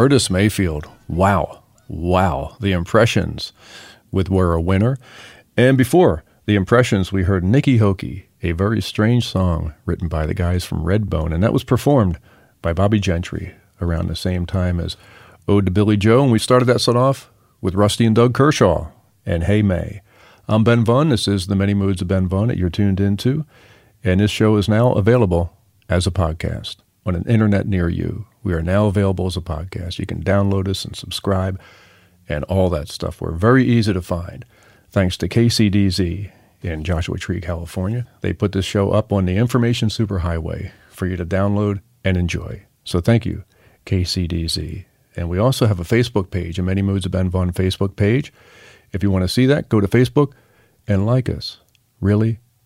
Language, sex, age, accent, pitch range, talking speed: English, male, 40-59, American, 90-115 Hz, 185 wpm